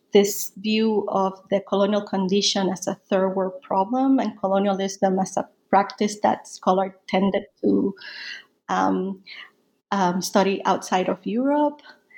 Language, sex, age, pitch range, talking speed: English, female, 30-49, 195-230 Hz, 130 wpm